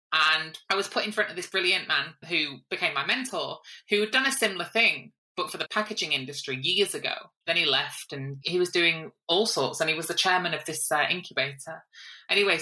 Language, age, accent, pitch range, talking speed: English, 20-39, British, 145-200 Hz, 220 wpm